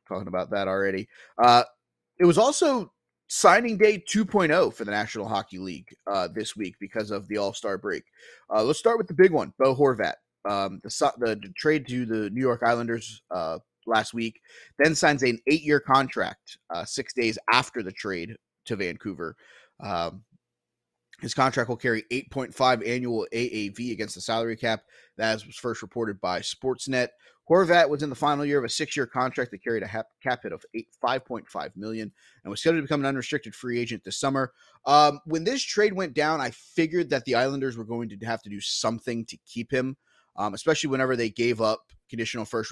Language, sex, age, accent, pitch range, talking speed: English, male, 30-49, American, 110-135 Hz, 190 wpm